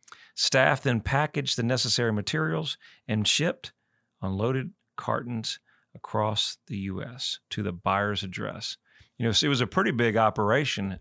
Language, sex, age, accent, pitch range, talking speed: English, male, 40-59, American, 105-120 Hz, 135 wpm